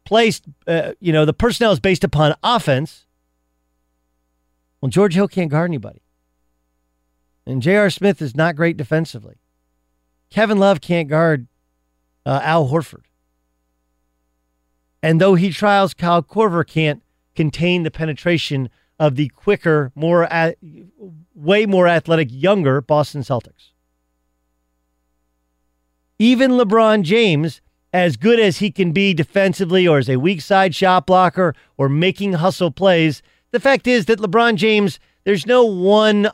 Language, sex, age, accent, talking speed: English, male, 40-59, American, 130 wpm